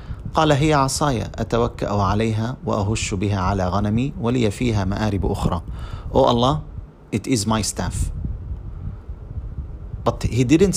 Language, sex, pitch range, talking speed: English, male, 90-120 Hz, 115 wpm